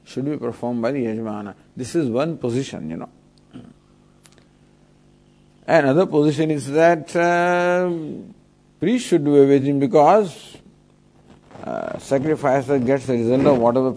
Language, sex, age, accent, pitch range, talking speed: English, male, 50-69, Indian, 100-130 Hz, 135 wpm